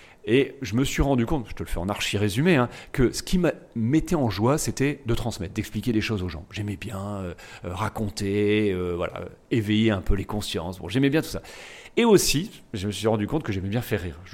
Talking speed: 240 wpm